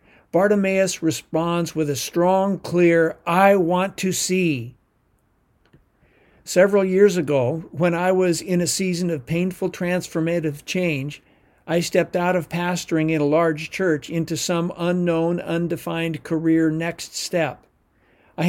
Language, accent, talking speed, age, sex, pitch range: English, American, 130 wpm, 50-69, male, 155-185 Hz